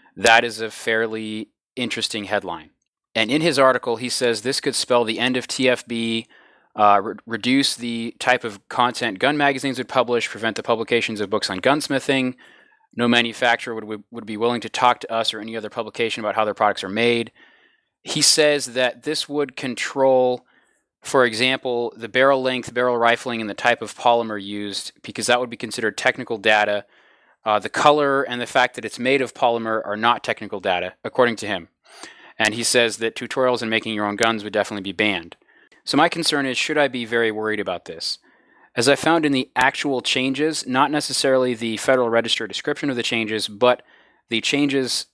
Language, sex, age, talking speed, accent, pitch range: English, male, 30-49, 190 wpm, American, 115-130 Hz